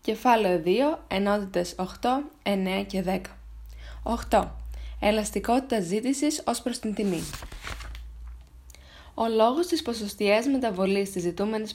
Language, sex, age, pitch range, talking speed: Greek, female, 10-29, 185-255 Hz, 105 wpm